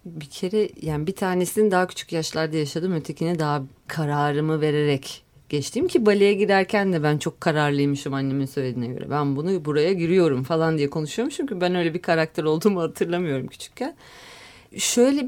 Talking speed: 155 wpm